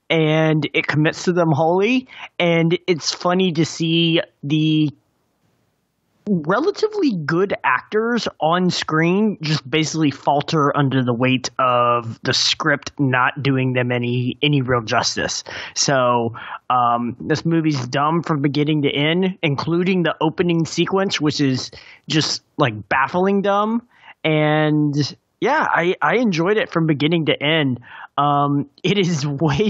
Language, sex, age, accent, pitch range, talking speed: English, male, 20-39, American, 140-180 Hz, 135 wpm